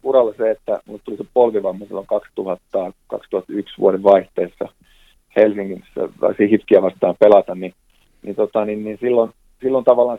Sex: male